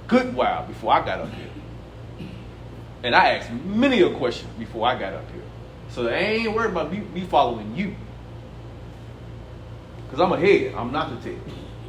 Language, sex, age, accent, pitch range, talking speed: English, male, 30-49, American, 125-200 Hz, 170 wpm